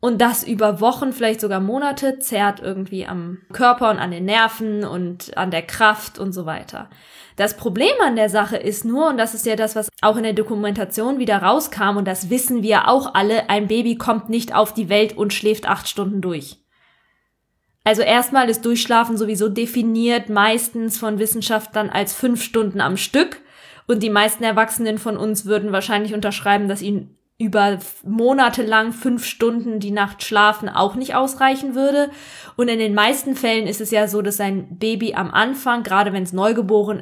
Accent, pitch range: German, 200-240 Hz